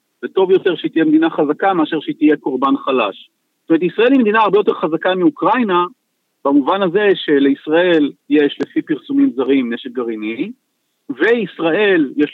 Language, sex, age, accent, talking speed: Hebrew, male, 50-69, native, 150 wpm